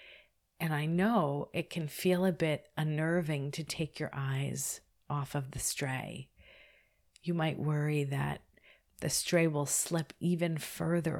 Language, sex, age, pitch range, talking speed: English, female, 40-59, 135-165 Hz, 145 wpm